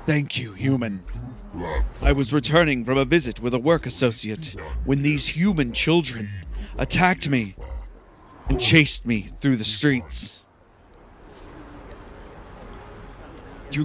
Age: 30-49